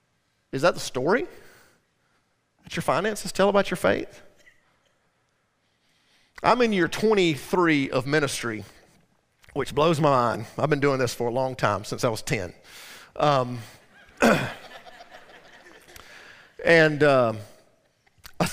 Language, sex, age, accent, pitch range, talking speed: English, male, 40-59, American, 150-215 Hz, 115 wpm